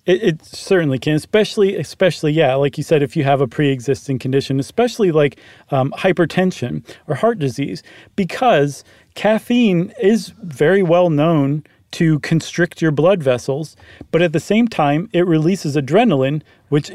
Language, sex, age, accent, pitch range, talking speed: English, male, 40-59, American, 140-185 Hz, 150 wpm